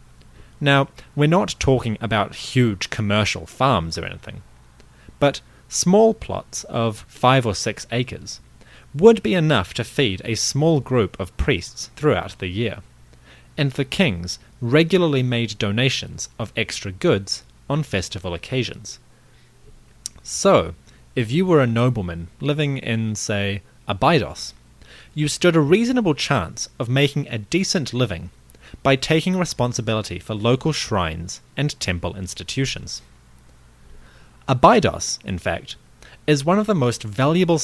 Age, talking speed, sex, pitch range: 30-49, 130 wpm, male, 95-140 Hz